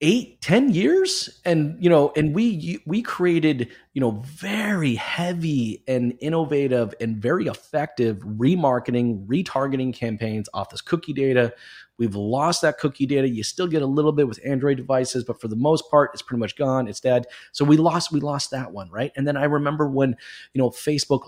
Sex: male